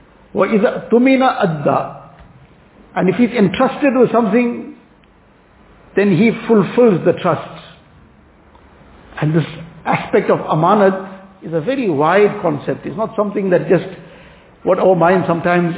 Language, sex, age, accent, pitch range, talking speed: English, male, 60-79, Indian, 165-195 Hz, 130 wpm